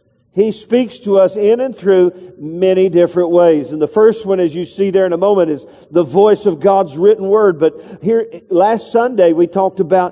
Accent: American